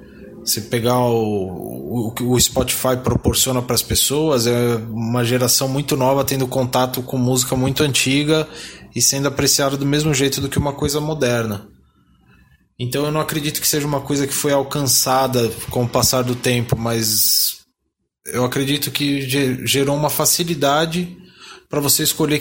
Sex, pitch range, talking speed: male, 120-145 Hz, 160 wpm